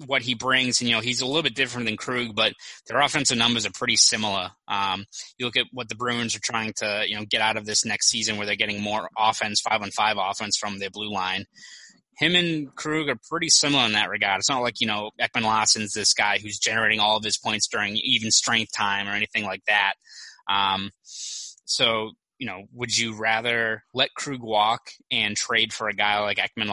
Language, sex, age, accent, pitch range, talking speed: English, male, 20-39, American, 105-120 Hz, 225 wpm